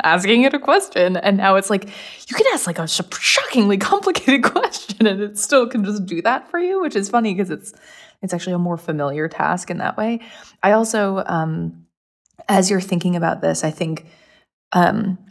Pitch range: 170-215 Hz